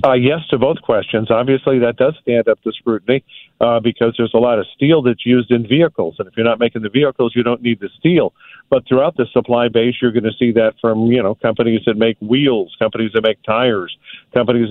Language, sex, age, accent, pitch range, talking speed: English, male, 50-69, American, 115-130 Hz, 235 wpm